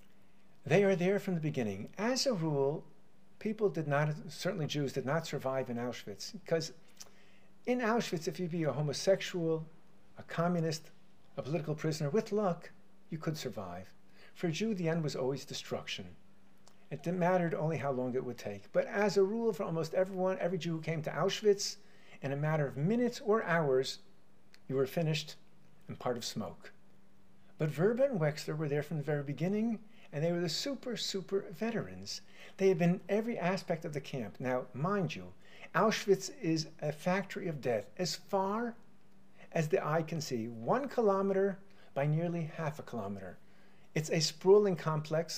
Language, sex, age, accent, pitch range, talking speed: English, male, 50-69, American, 140-195 Hz, 175 wpm